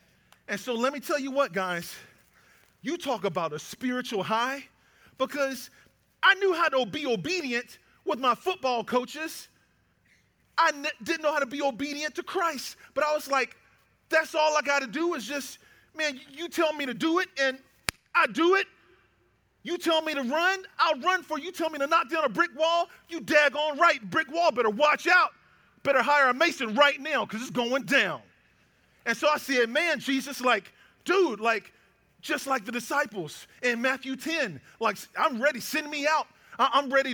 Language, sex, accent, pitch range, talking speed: English, male, American, 235-310 Hz, 190 wpm